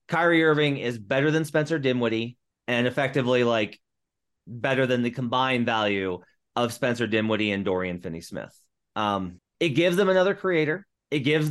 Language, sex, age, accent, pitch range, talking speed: English, male, 30-49, American, 110-145 Hz, 150 wpm